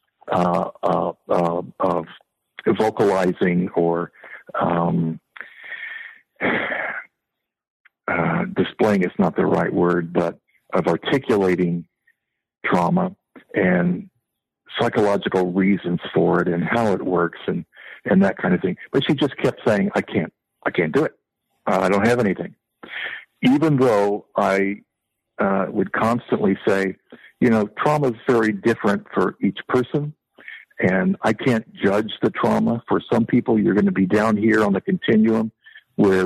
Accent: American